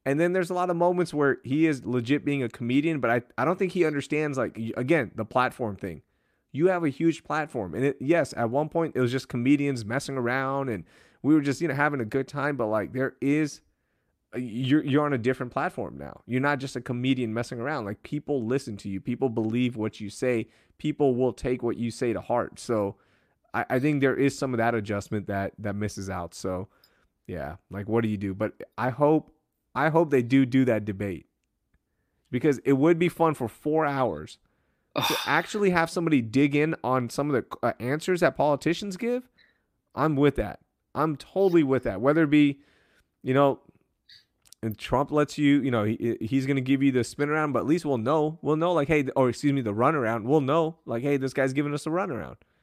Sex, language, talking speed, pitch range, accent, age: male, English, 225 wpm, 120-150 Hz, American, 30-49